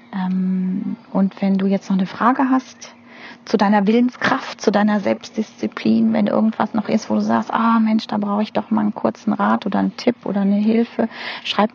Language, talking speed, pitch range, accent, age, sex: German, 195 wpm, 190-235 Hz, German, 30-49, female